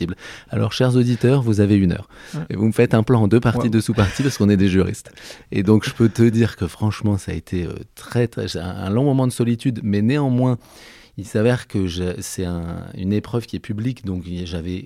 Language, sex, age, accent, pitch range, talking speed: French, male, 30-49, French, 95-120 Hz, 235 wpm